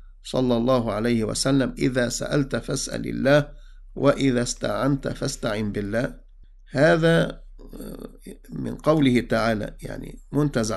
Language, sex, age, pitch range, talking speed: English, male, 50-69, 110-140 Hz, 100 wpm